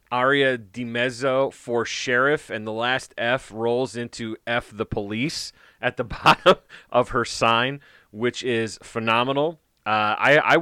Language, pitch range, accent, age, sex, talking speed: English, 100-125 Hz, American, 30-49, male, 145 wpm